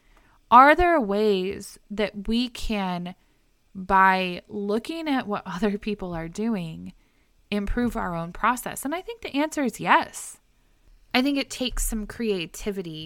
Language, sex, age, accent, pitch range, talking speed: English, female, 20-39, American, 170-230 Hz, 140 wpm